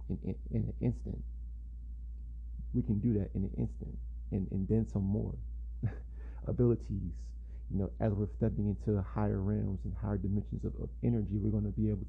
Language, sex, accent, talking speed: English, male, American, 185 wpm